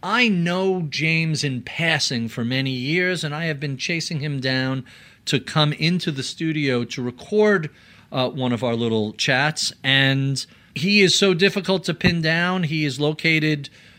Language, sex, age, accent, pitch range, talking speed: English, male, 40-59, American, 125-165 Hz, 165 wpm